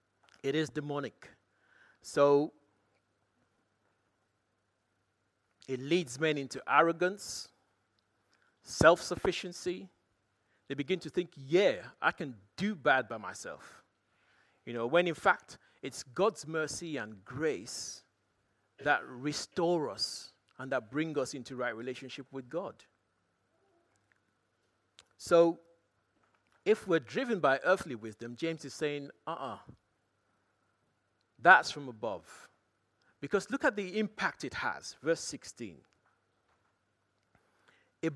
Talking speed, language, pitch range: 105 wpm, English, 105-180 Hz